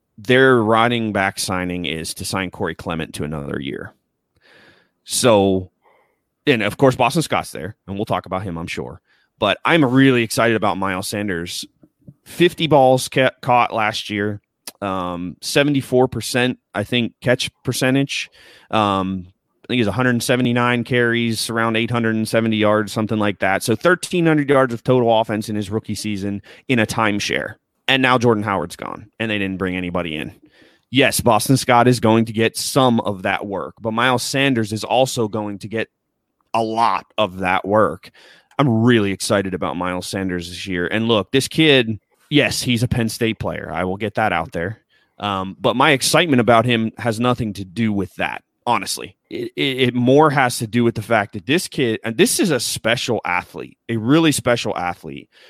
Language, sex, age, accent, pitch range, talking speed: English, male, 30-49, American, 100-125 Hz, 180 wpm